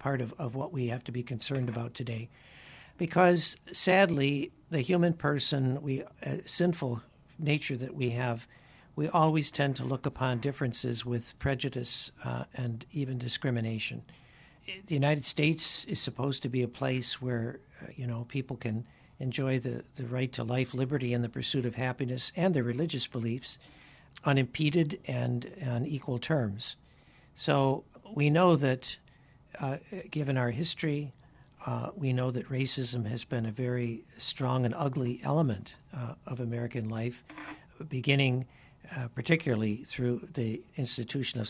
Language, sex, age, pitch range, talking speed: English, male, 60-79, 125-145 Hz, 150 wpm